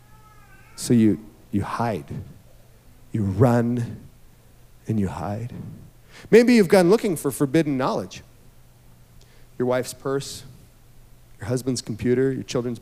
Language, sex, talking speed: English, male, 110 wpm